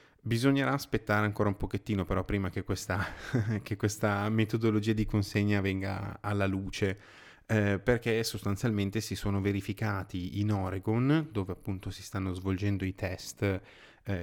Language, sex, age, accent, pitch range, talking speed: Italian, male, 20-39, native, 95-115 Hz, 135 wpm